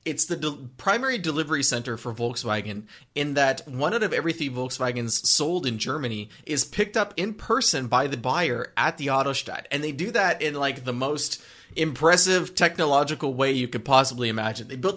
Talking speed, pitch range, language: 185 wpm, 120-160 Hz, English